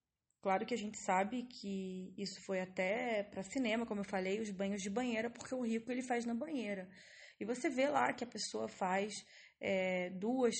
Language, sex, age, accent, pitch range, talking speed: English, female, 20-39, Brazilian, 195-265 Hz, 200 wpm